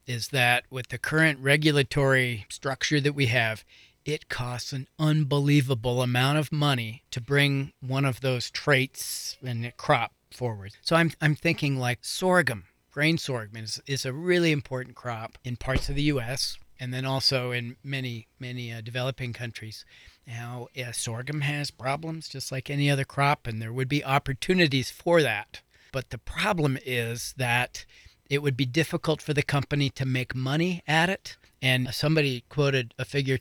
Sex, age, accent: male, 40-59, American